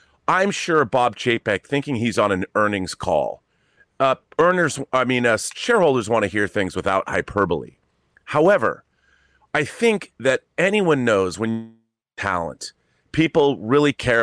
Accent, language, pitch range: American, English, 100-135 Hz